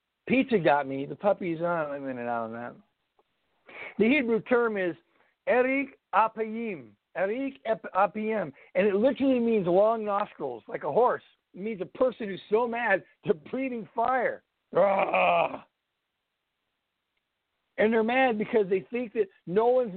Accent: American